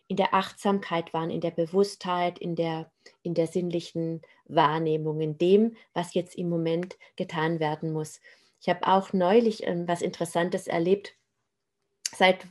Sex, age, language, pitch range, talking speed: female, 30-49, German, 165-195 Hz, 150 wpm